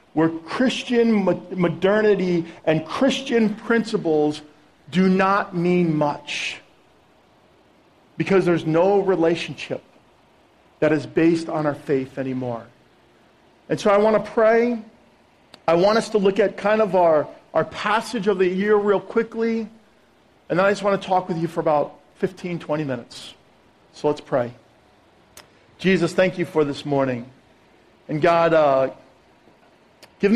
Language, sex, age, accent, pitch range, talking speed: English, male, 50-69, American, 150-195 Hz, 140 wpm